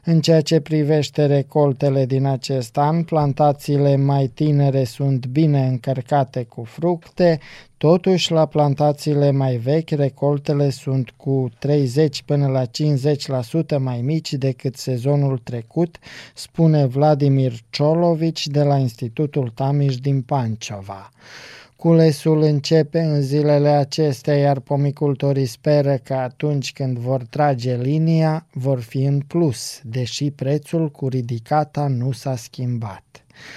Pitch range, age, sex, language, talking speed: 130-150 Hz, 20-39, male, Romanian, 120 wpm